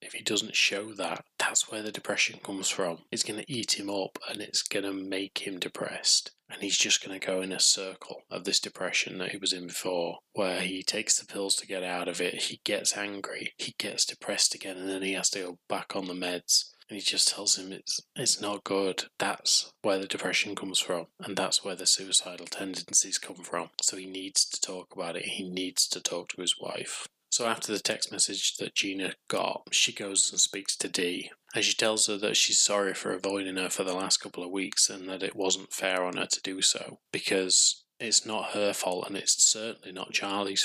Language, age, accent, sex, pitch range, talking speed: English, 20-39, British, male, 95-100 Hz, 230 wpm